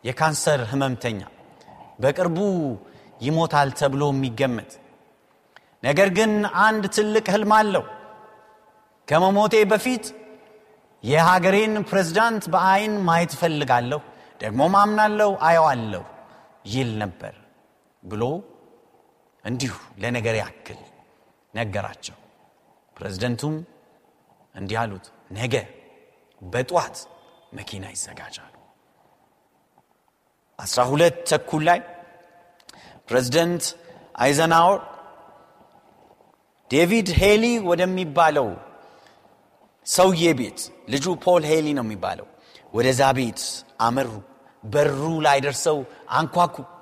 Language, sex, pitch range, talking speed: Amharic, male, 135-215 Hz, 70 wpm